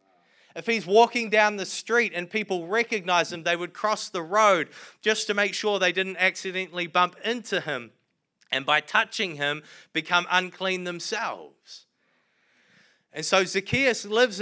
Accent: Australian